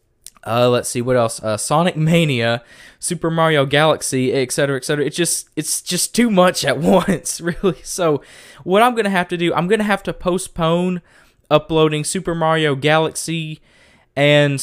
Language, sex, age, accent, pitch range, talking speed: English, male, 20-39, American, 130-160 Hz, 160 wpm